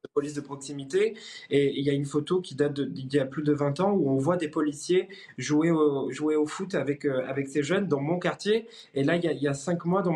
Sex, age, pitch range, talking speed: male, 20-39, 140-170 Hz, 265 wpm